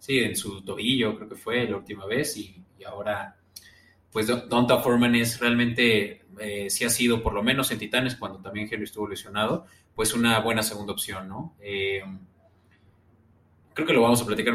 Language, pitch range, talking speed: Spanish, 95-115 Hz, 185 wpm